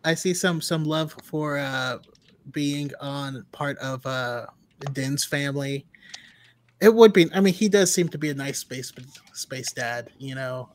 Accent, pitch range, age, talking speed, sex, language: American, 135-180 Hz, 30-49, 175 wpm, male, English